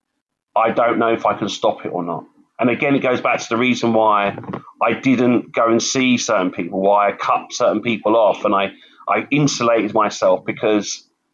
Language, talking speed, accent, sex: English, 200 wpm, British, male